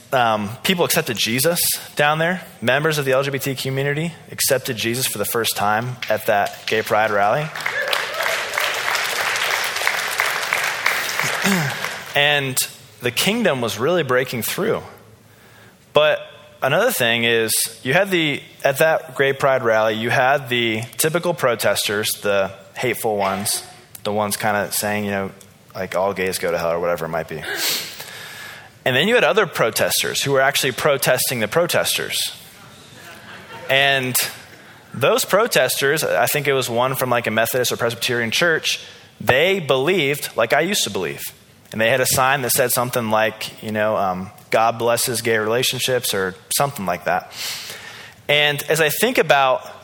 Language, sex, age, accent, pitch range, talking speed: English, male, 20-39, American, 110-140 Hz, 150 wpm